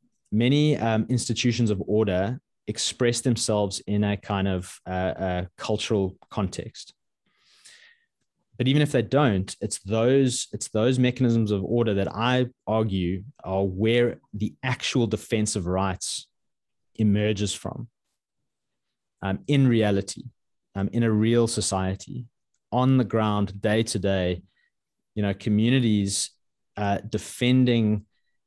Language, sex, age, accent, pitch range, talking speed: English, male, 20-39, Australian, 100-120 Hz, 120 wpm